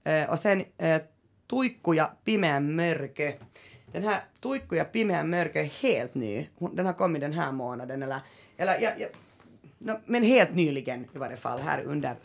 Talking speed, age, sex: 165 wpm, 30-49, female